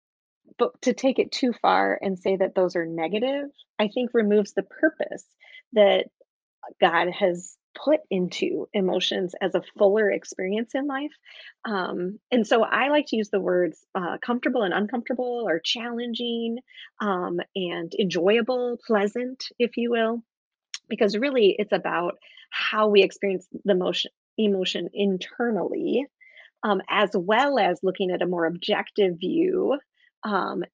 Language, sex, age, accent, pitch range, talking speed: English, female, 30-49, American, 190-250 Hz, 140 wpm